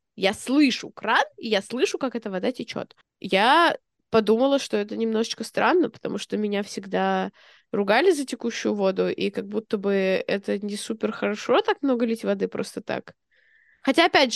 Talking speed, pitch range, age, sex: 165 wpm, 210-270 Hz, 20-39, female